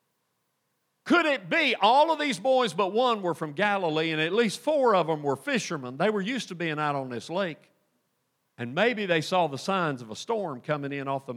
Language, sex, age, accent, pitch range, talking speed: English, male, 50-69, American, 155-235 Hz, 220 wpm